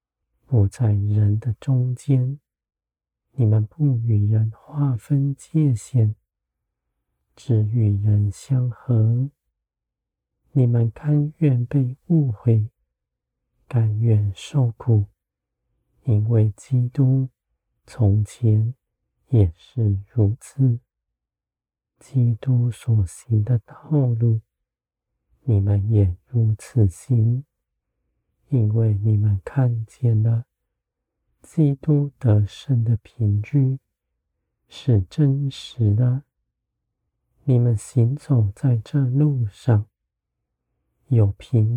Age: 50-69